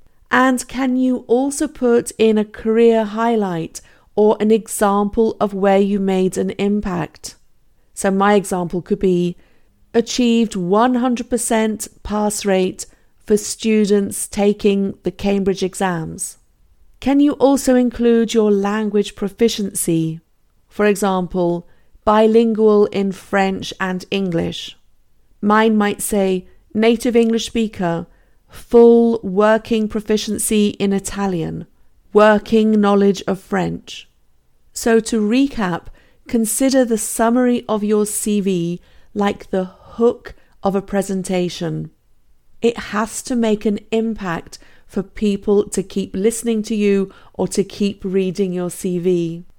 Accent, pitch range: British, 195-225 Hz